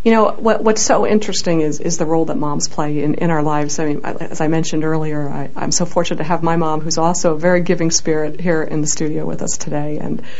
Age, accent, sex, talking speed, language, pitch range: 50-69, American, female, 260 wpm, English, 165-200 Hz